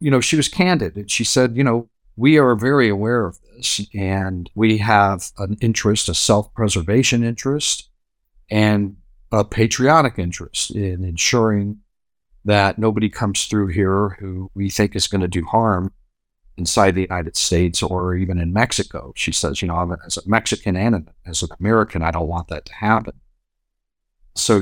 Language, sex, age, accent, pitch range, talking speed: English, male, 50-69, American, 90-110 Hz, 170 wpm